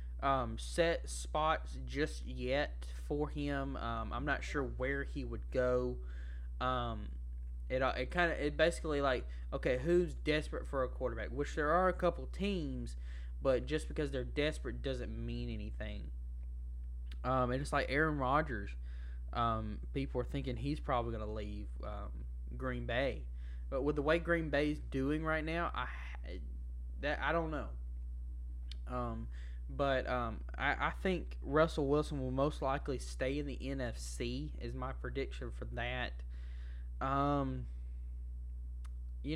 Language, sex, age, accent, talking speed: English, male, 20-39, American, 150 wpm